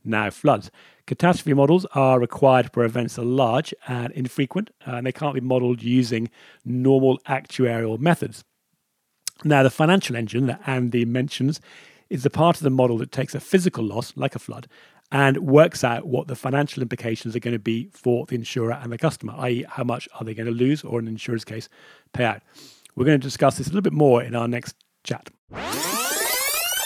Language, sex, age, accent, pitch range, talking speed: English, male, 40-59, British, 110-130 Hz, 195 wpm